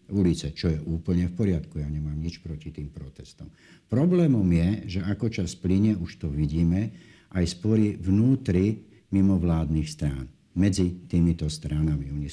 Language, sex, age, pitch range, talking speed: Slovak, male, 60-79, 85-95 Hz, 145 wpm